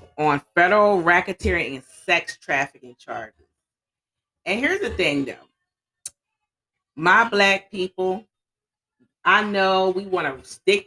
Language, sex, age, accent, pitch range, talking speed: English, female, 40-59, American, 145-210 Hz, 115 wpm